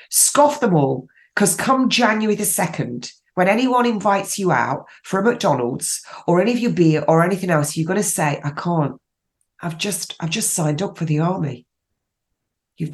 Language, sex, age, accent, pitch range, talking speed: English, female, 40-59, British, 150-195 Hz, 185 wpm